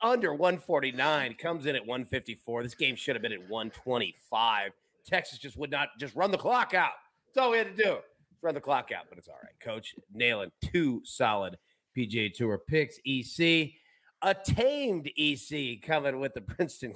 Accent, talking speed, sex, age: American, 180 wpm, male, 30-49